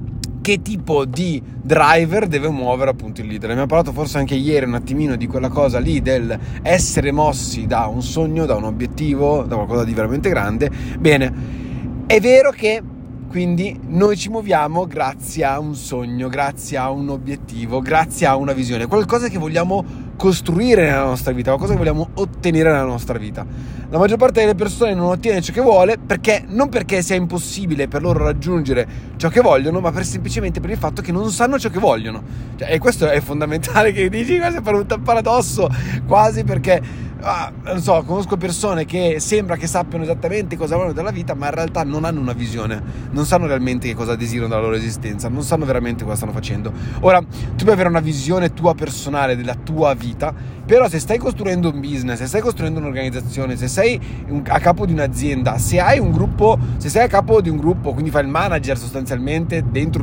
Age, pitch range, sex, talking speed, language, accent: 30-49, 125-175 Hz, male, 195 wpm, Italian, native